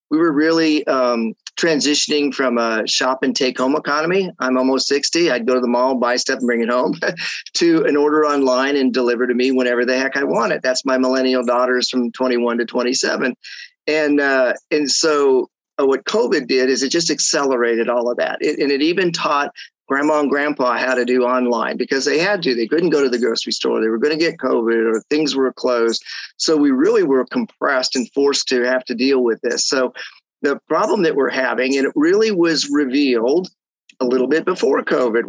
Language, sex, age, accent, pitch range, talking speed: English, male, 40-59, American, 125-155 Hz, 210 wpm